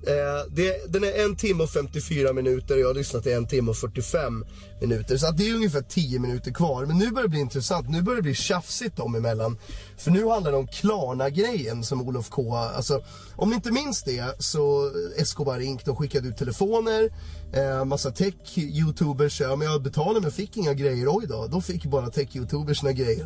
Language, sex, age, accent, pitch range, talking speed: Swedish, male, 30-49, native, 120-175 Hz, 210 wpm